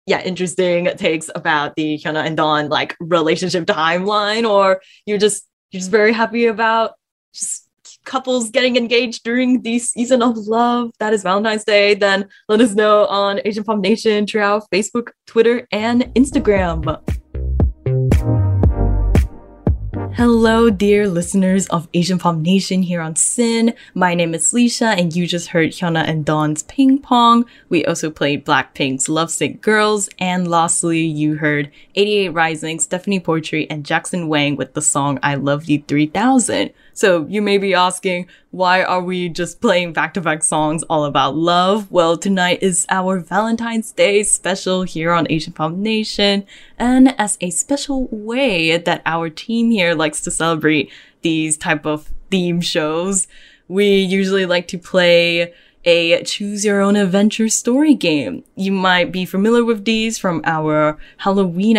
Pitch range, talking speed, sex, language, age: 160-215 Hz, 150 wpm, female, English, 10-29